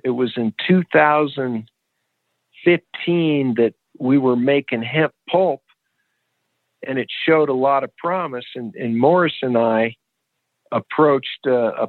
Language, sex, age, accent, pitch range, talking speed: English, male, 50-69, American, 120-150 Hz, 125 wpm